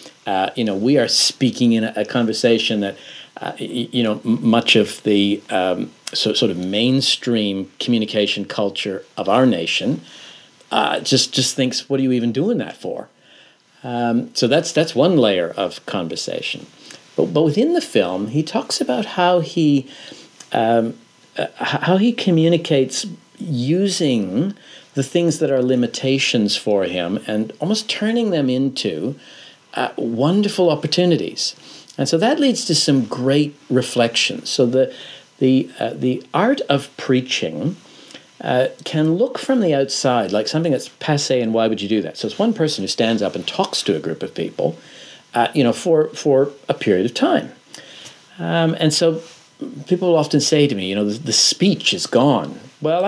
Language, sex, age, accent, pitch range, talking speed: English, male, 50-69, American, 120-165 Hz, 165 wpm